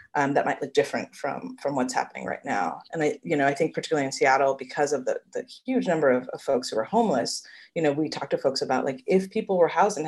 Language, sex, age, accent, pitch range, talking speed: English, female, 30-49, American, 135-205 Hz, 270 wpm